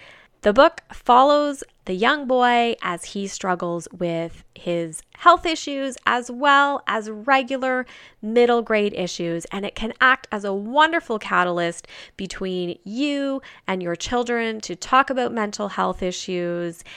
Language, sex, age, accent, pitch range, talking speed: English, female, 20-39, American, 180-260 Hz, 140 wpm